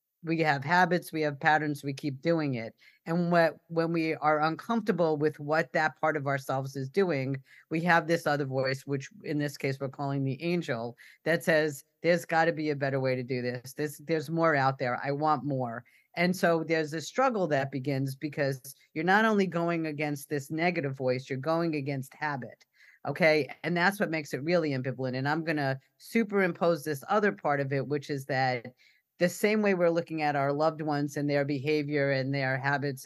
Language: English